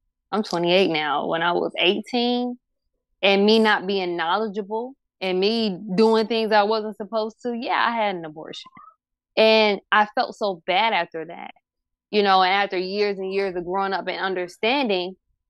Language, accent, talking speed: English, American, 165 wpm